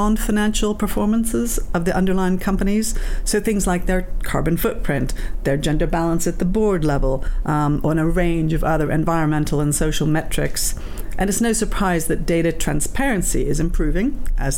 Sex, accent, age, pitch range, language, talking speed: female, British, 50-69, 155-200 Hz, English, 160 wpm